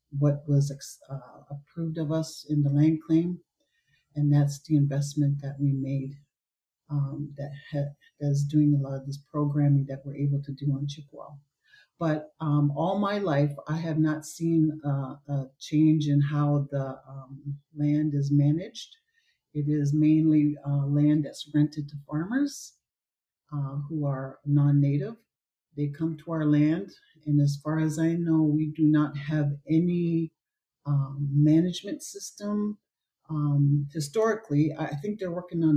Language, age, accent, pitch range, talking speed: English, 40-59, American, 145-160 Hz, 155 wpm